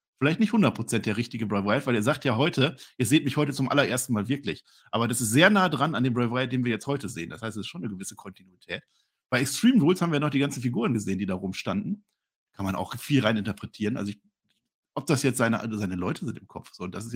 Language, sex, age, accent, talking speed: German, male, 50-69, German, 270 wpm